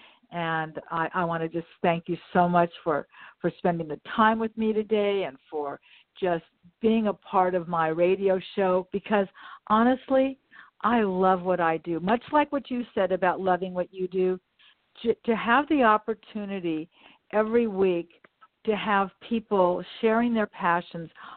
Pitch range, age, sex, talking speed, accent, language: 175-205 Hz, 50-69, female, 165 wpm, American, English